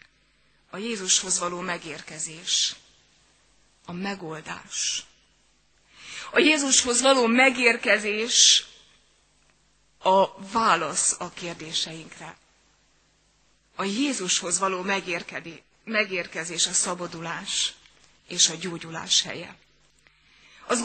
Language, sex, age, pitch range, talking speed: Hungarian, female, 30-49, 175-225 Hz, 75 wpm